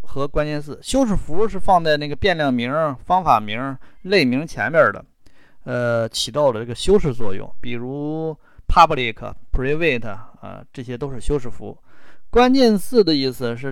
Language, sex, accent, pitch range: Chinese, male, native, 120-165 Hz